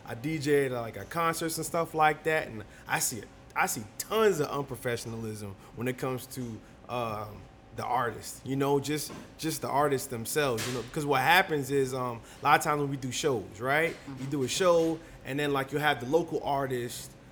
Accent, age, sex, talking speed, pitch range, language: American, 20-39, male, 210 wpm, 130-195 Hz, English